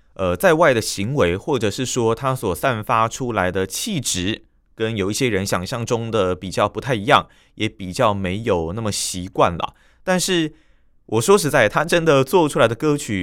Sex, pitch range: male, 95-150 Hz